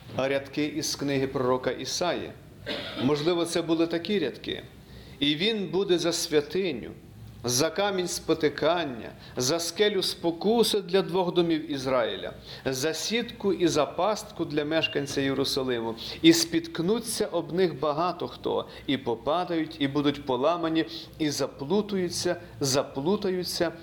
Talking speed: 120 wpm